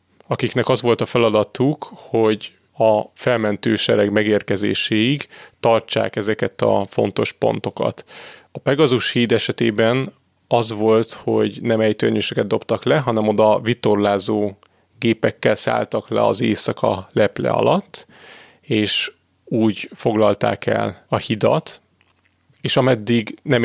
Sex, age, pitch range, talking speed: male, 30-49, 105-120 Hz, 115 wpm